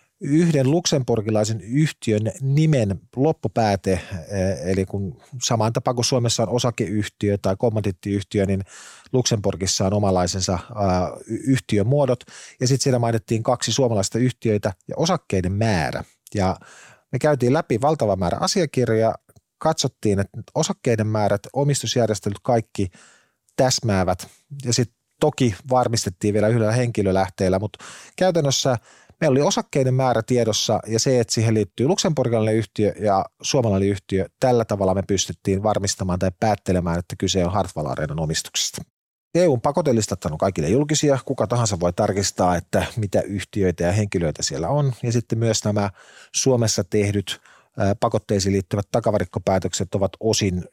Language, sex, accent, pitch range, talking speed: Finnish, male, native, 95-125 Hz, 125 wpm